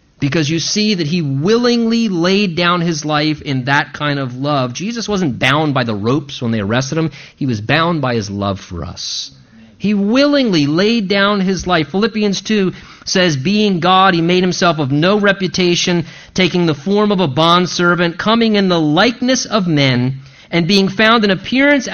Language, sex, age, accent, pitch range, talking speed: English, male, 40-59, American, 145-205 Hz, 185 wpm